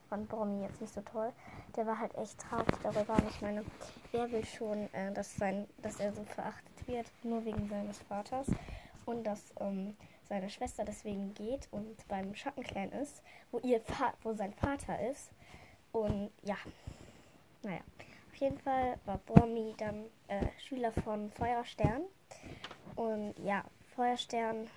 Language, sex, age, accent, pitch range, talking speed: German, female, 10-29, German, 210-245 Hz, 155 wpm